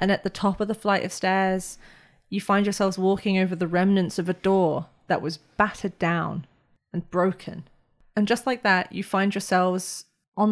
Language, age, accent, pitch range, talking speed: English, 20-39, British, 170-195 Hz, 190 wpm